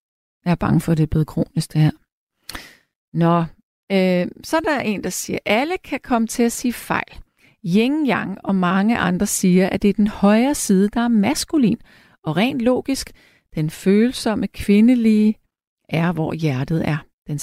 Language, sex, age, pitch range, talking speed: Danish, female, 40-59, 165-225 Hz, 175 wpm